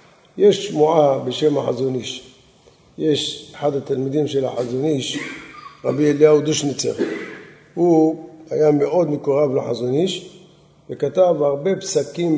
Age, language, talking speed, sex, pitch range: 50-69, Hebrew, 95 wpm, male, 145-195 Hz